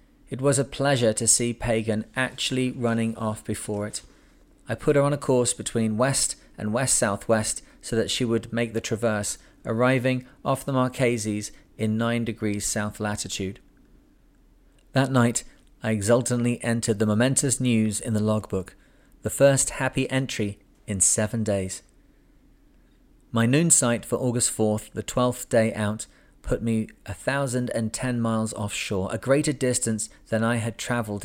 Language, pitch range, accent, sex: English, 110-125 Hz, British, male